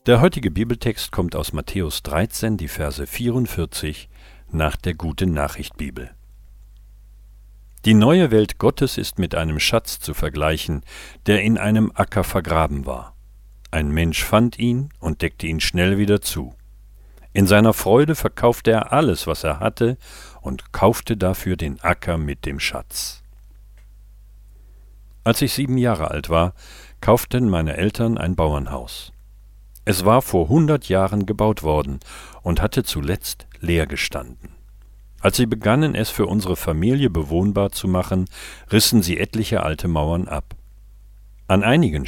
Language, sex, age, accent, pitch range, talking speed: German, male, 50-69, German, 85-110 Hz, 140 wpm